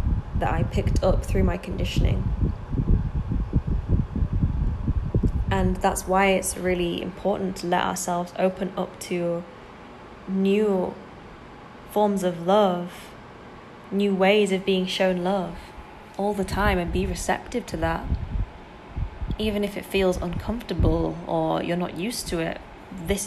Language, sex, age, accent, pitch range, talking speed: English, female, 20-39, British, 165-195 Hz, 125 wpm